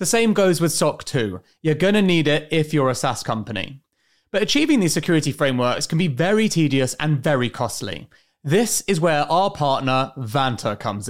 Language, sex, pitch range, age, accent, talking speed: English, male, 115-190 Hz, 30-49, British, 190 wpm